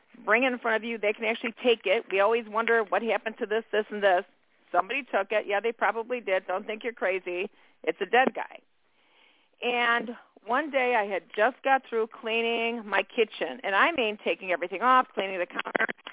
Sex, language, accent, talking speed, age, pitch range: female, English, American, 210 wpm, 50-69, 215-260 Hz